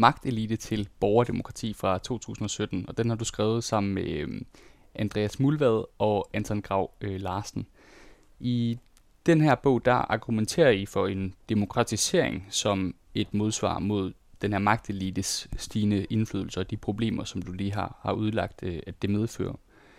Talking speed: 145 wpm